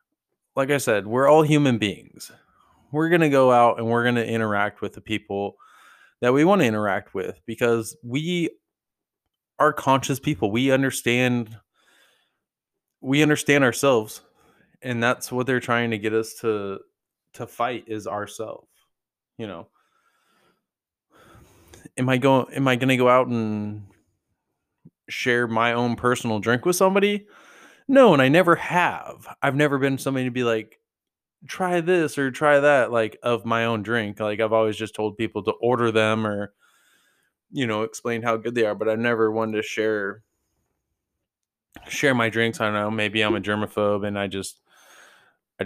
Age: 20-39